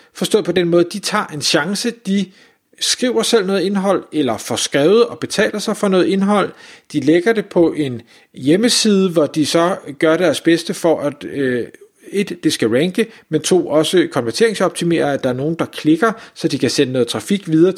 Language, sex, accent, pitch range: Danish, male, native, 150-195 Hz